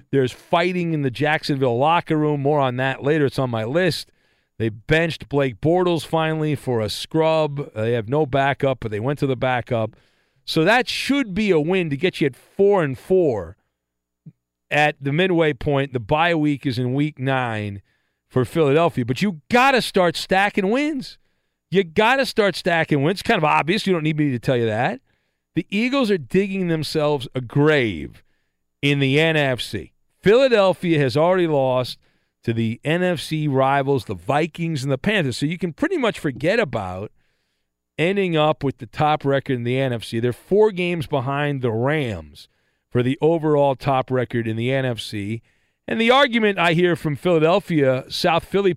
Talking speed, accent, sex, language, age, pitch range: 180 wpm, American, male, English, 40-59, 130-170 Hz